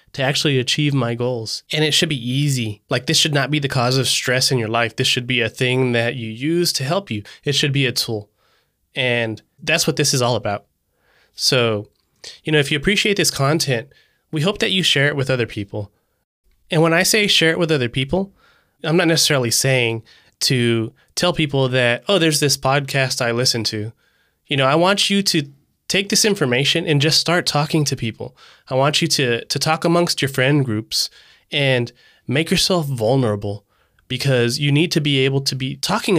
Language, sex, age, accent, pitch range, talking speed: English, male, 20-39, American, 120-155 Hz, 205 wpm